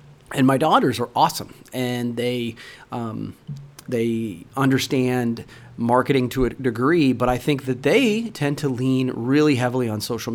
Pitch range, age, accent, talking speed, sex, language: 120-145 Hz, 30-49, American, 150 wpm, male, English